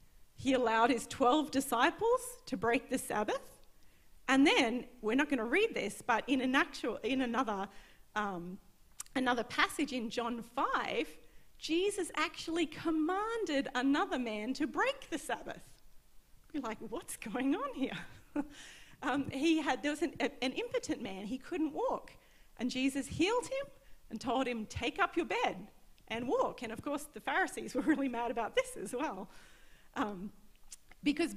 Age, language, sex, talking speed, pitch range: 40-59, English, female, 160 wpm, 230-320 Hz